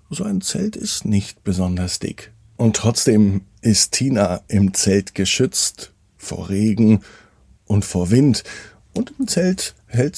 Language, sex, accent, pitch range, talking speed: German, male, German, 95-120 Hz, 135 wpm